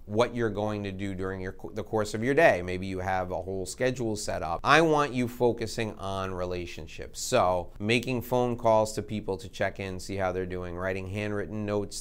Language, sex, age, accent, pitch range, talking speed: English, male, 30-49, American, 95-120 Hz, 205 wpm